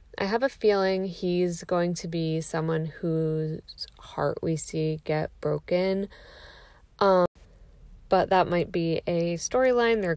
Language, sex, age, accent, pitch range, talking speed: English, female, 20-39, American, 160-200 Hz, 135 wpm